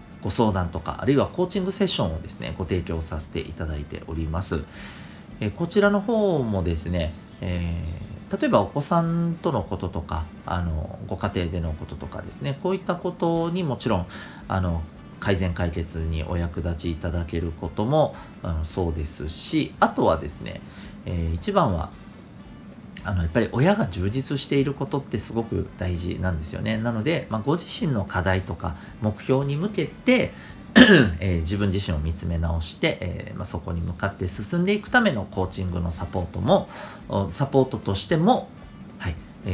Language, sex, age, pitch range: Japanese, male, 40-59, 85-125 Hz